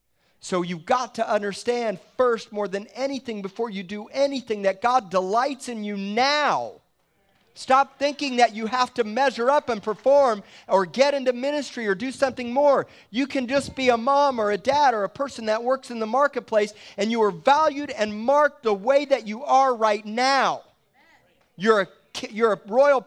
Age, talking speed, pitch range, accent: 40-59, 185 wpm, 180-260 Hz, American